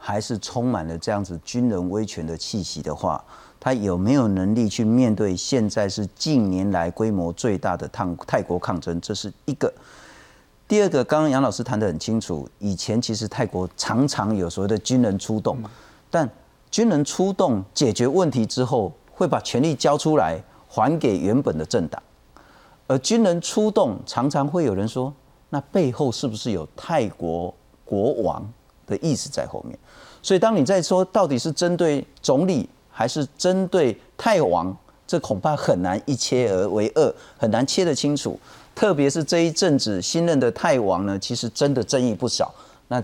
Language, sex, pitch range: Chinese, male, 100-165 Hz